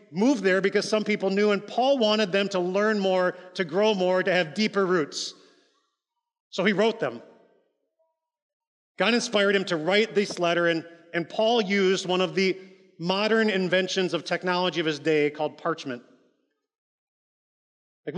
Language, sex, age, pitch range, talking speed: English, male, 30-49, 160-200 Hz, 160 wpm